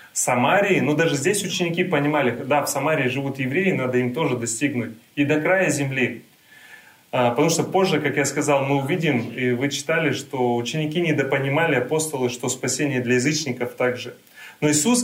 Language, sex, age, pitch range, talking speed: Russian, male, 30-49, 125-170 Hz, 165 wpm